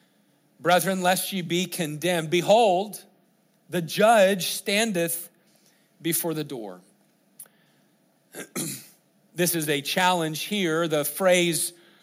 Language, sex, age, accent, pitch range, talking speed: English, male, 40-59, American, 170-210 Hz, 95 wpm